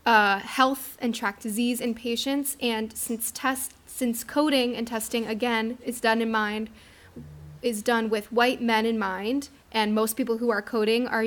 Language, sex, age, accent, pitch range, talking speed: English, female, 10-29, American, 220-250 Hz, 175 wpm